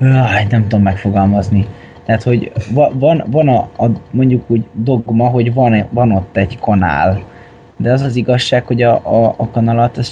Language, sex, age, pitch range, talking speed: Hungarian, male, 20-39, 105-120 Hz, 160 wpm